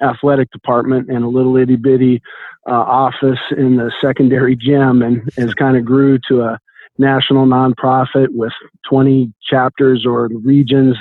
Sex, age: male, 50-69